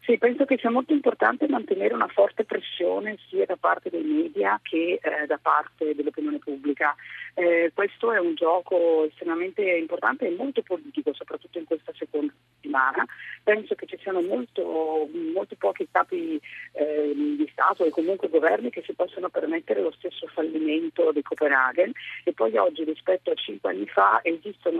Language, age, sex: Italian, 40-59, female